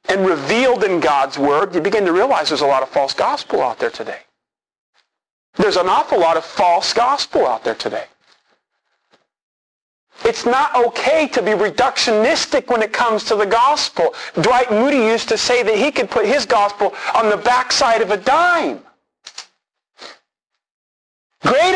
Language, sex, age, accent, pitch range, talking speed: English, male, 40-59, American, 235-355 Hz, 160 wpm